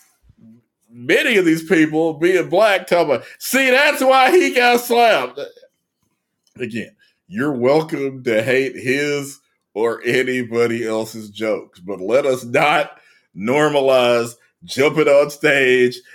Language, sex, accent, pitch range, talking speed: English, male, American, 115-160 Hz, 120 wpm